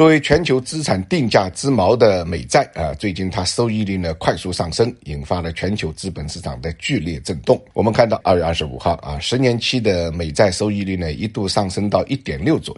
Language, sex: Chinese, male